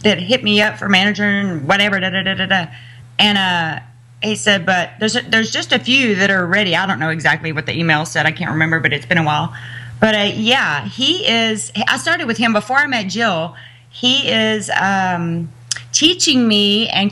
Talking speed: 215 wpm